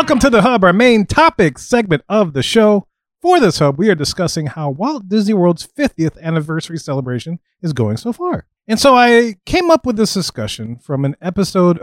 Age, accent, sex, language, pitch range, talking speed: 30-49, American, male, English, 145-220 Hz, 200 wpm